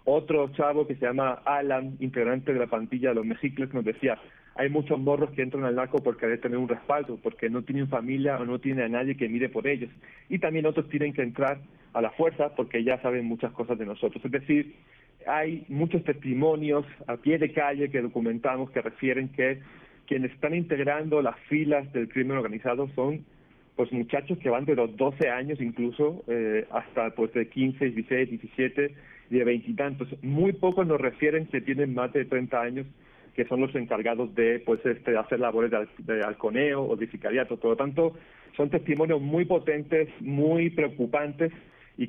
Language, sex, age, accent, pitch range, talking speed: Spanish, male, 40-59, Mexican, 120-145 Hz, 195 wpm